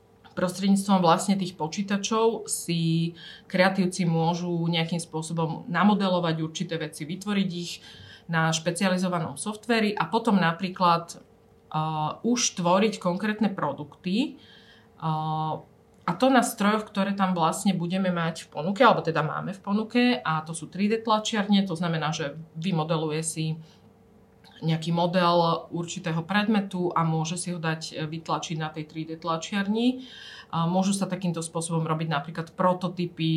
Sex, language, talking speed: female, Slovak, 130 wpm